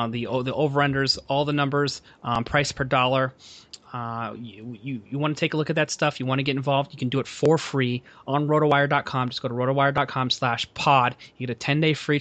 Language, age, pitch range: English, 30-49, 125-145 Hz